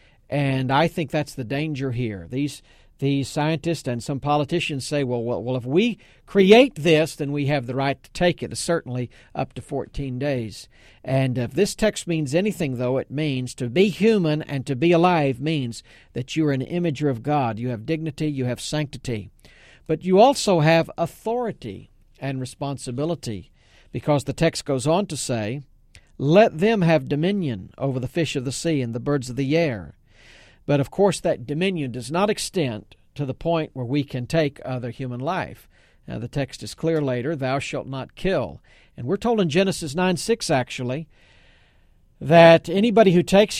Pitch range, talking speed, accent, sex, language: 125-170 Hz, 185 wpm, American, male, English